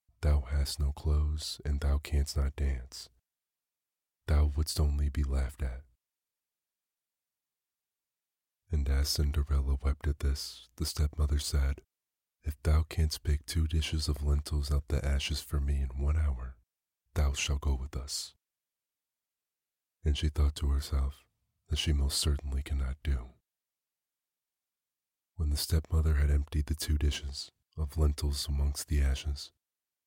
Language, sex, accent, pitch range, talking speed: English, male, American, 70-80 Hz, 140 wpm